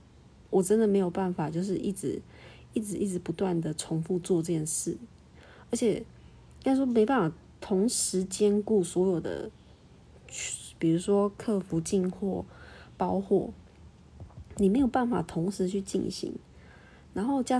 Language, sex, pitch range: Chinese, female, 170-210 Hz